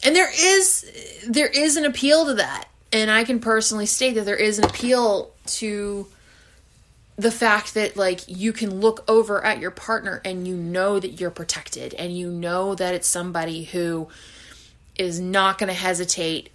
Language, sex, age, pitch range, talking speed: English, female, 20-39, 170-215 Hz, 180 wpm